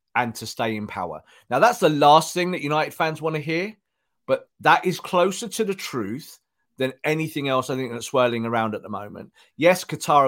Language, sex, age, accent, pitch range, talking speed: English, male, 40-59, British, 120-165 Hz, 210 wpm